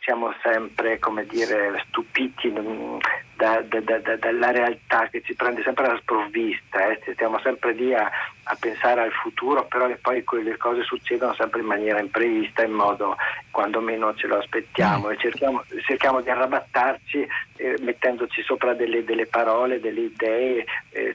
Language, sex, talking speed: Italian, male, 160 wpm